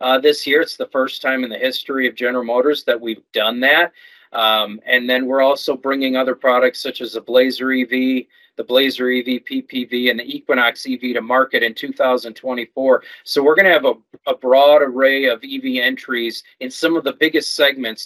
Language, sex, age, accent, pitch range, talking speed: English, male, 40-59, American, 125-150 Hz, 200 wpm